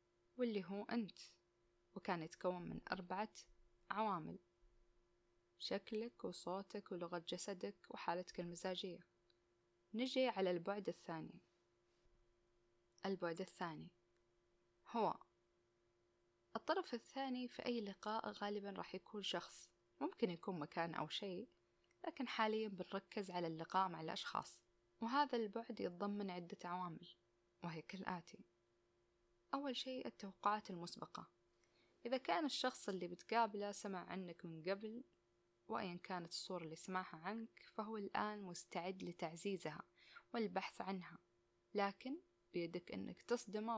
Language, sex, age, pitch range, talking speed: Arabic, female, 20-39, 165-220 Hz, 110 wpm